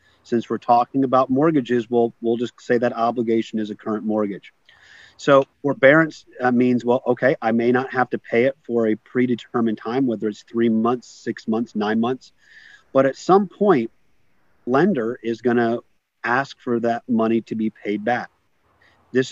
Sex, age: male, 40-59